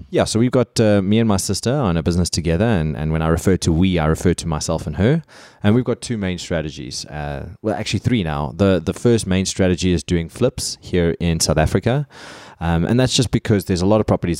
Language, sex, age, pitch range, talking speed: English, male, 20-39, 85-105 Hz, 245 wpm